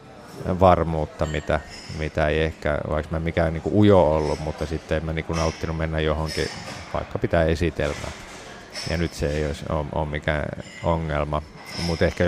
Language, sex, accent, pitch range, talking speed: English, male, Finnish, 80-95 Hz, 150 wpm